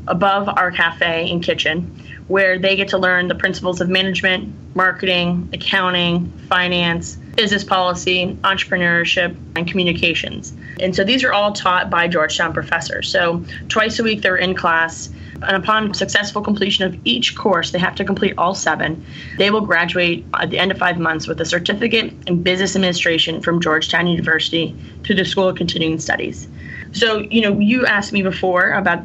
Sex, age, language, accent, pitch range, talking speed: female, 20-39, English, American, 170-195 Hz, 170 wpm